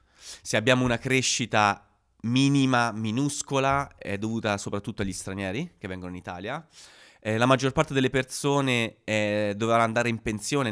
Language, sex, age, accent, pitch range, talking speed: Italian, male, 30-49, native, 105-145 Hz, 145 wpm